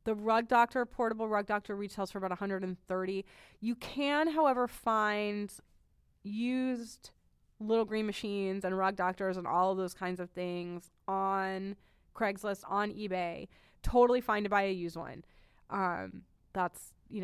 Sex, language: female, English